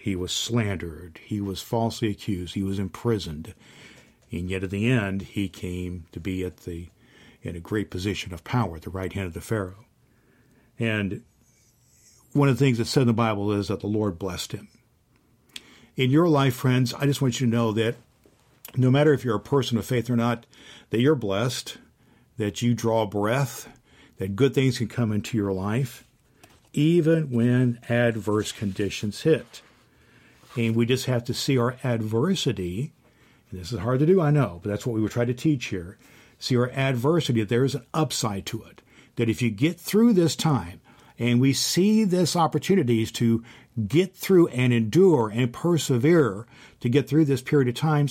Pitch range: 105-135 Hz